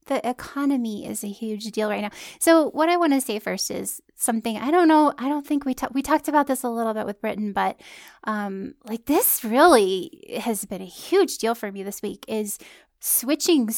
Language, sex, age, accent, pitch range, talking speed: English, female, 10-29, American, 220-285 Hz, 220 wpm